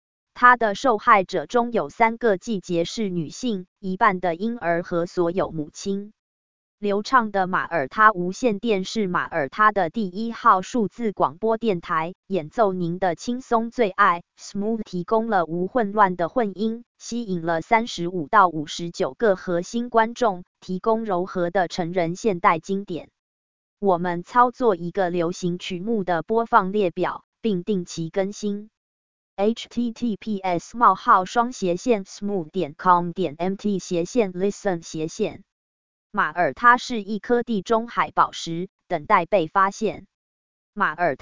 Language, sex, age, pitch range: English, female, 20-39, 175-225 Hz